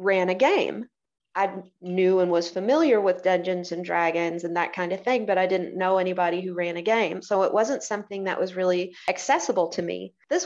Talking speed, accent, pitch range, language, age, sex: 210 wpm, American, 180-210 Hz, English, 30-49, female